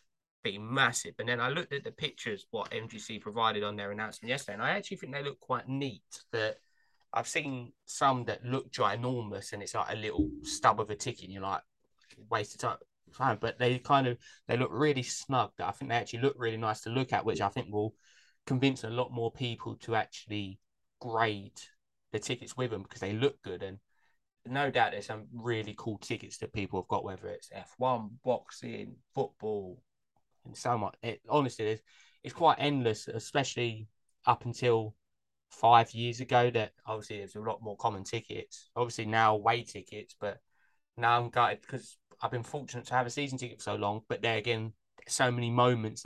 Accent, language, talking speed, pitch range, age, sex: British, English, 200 wpm, 105-125 Hz, 20-39, male